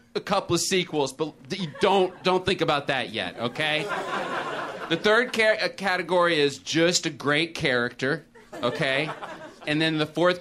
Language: English